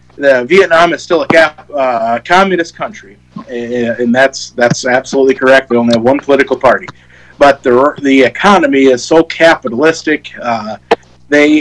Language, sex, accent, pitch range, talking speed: English, male, American, 125-155 Hz, 145 wpm